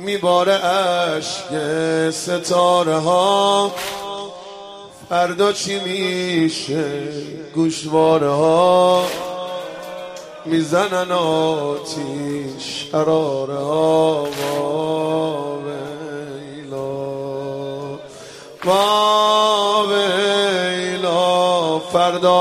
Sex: male